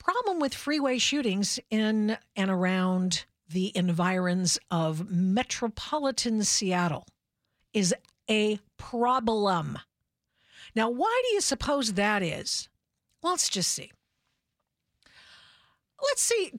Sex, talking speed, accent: female, 100 wpm, American